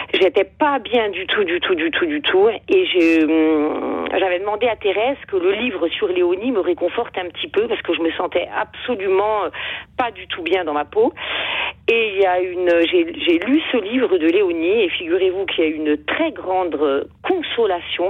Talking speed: 195 wpm